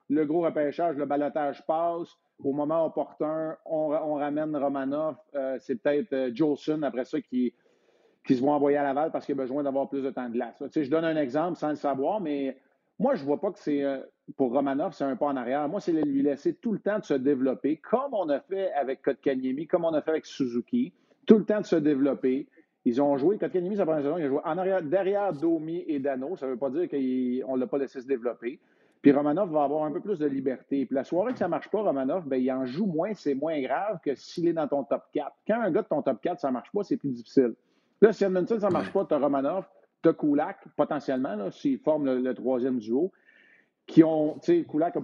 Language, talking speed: French, 255 wpm